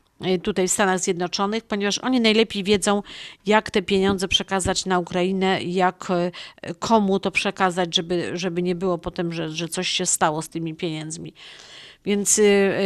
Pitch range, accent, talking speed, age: 180-210 Hz, native, 150 wpm, 50-69